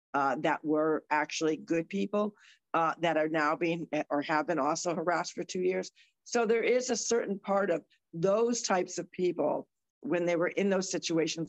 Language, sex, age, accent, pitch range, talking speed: English, female, 50-69, American, 165-215 Hz, 190 wpm